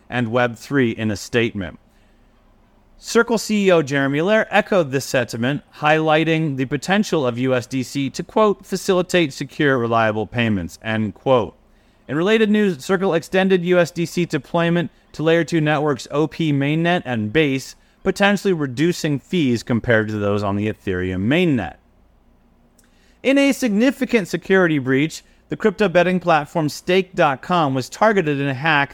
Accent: American